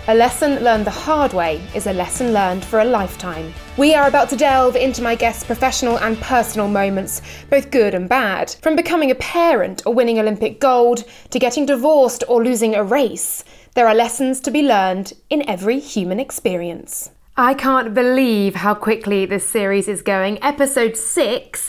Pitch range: 195-260 Hz